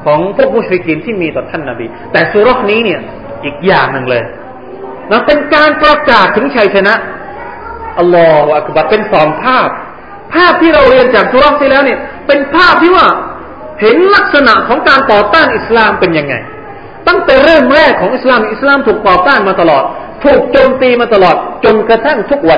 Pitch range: 195-295 Hz